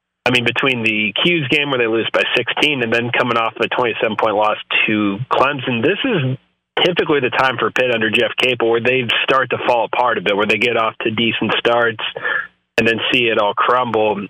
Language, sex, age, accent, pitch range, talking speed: English, male, 30-49, American, 105-120 Hz, 215 wpm